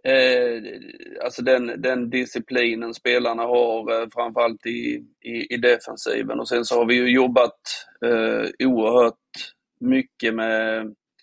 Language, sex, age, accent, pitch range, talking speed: Swedish, male, 30-49, native, 115-135 Hz, 130 wpm